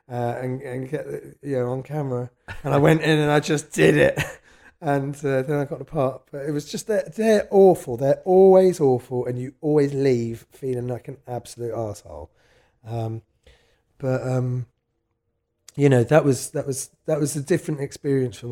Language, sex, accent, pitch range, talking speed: English, male, British, 105-135 Hz, 190 wpm